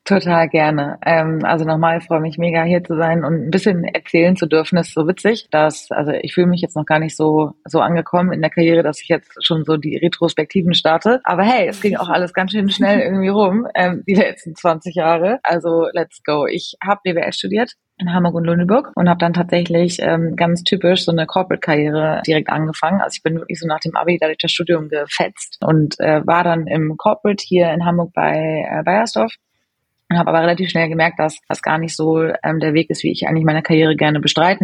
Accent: German